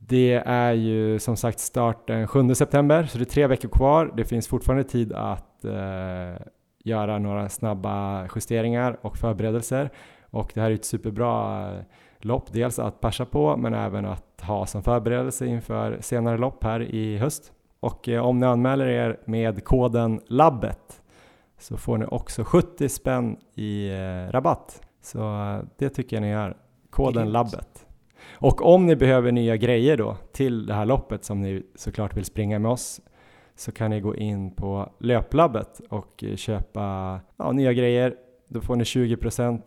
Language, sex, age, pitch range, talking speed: Swedish, male, 20-39, 100-125 Hz, 170 wpm